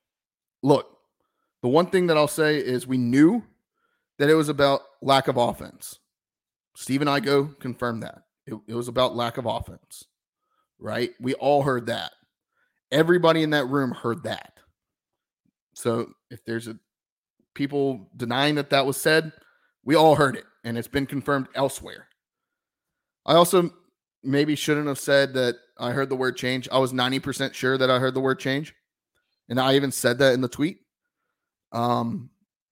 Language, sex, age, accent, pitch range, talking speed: English, male, 30-49, American, 125-150 Hz, 165 wpm